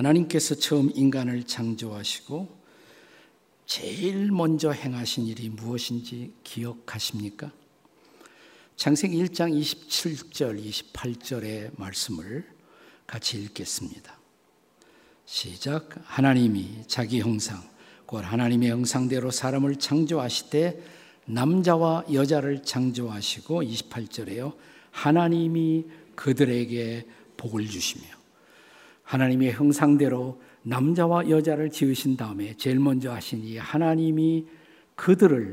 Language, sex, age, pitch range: Korean, male, 50-69, 120-160 Hz